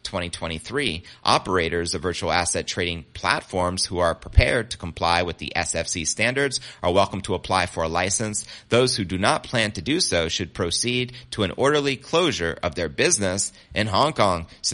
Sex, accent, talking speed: male, American, 180 wpm